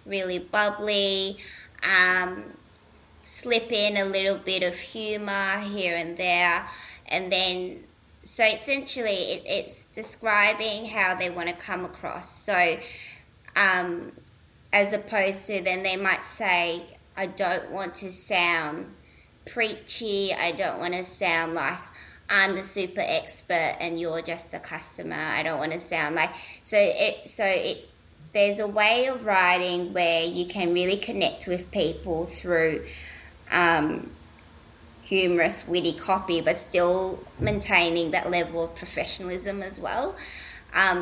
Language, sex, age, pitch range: English, female, 20-39, 170-195 Hz